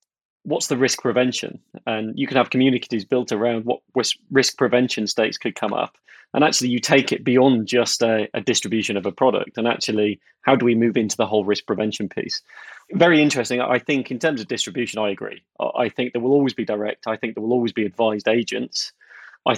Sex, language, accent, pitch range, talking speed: male, English, British, 110-135 Hz, 210 wpm